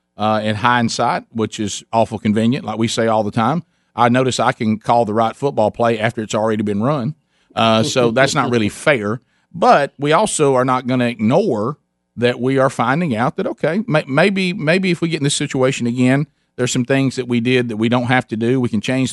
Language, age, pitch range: English, 40-59, 115-135 Hz